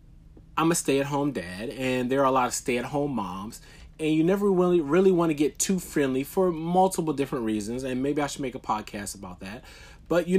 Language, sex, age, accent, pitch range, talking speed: English, male, 30-49, American, 110-145 Hz, 215 wpm